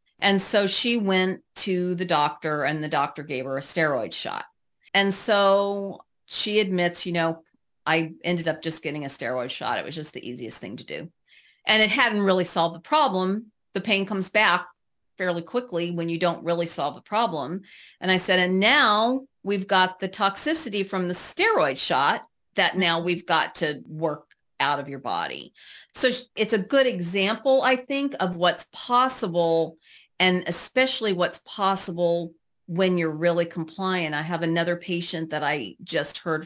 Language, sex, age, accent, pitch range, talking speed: English, female, 40-59, American, 160-195 Hz, 175 wpm